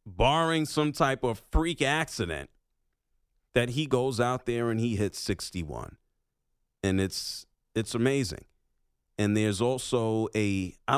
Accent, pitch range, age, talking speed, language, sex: American, 105-155 Hz, 30-49, 130 wpm, English, male